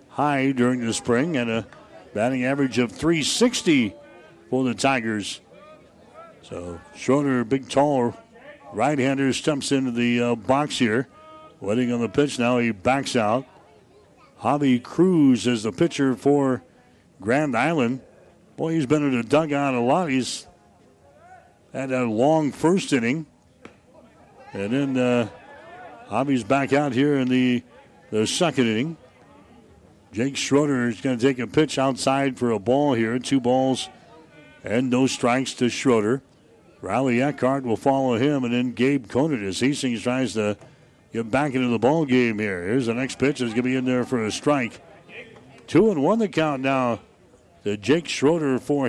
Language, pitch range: English, 120-140 Hz